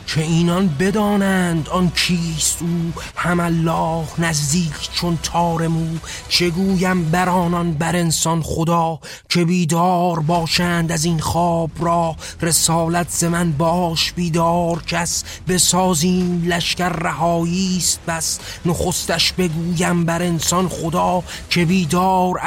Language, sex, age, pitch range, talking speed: Persian, male, 30-49, 165-180 Hz, 110 wpm